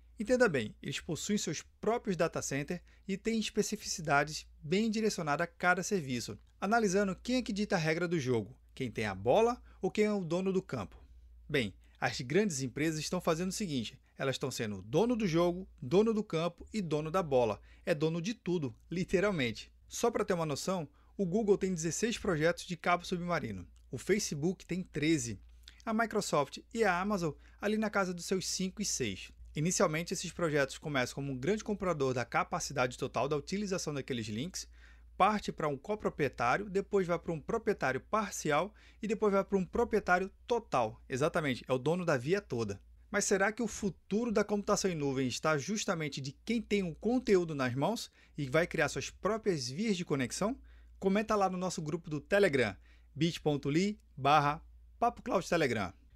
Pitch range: 140-200 Hz